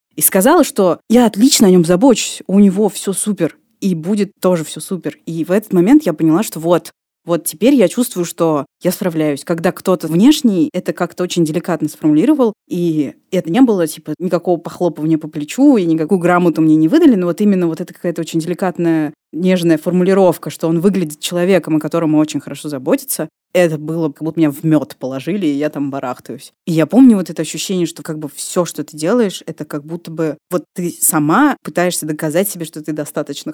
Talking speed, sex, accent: 200 wpm, female, native